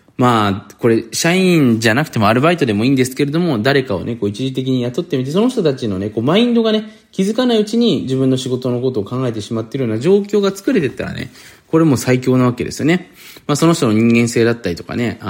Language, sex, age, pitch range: Japanese, male, 20-39, 105-155 Hz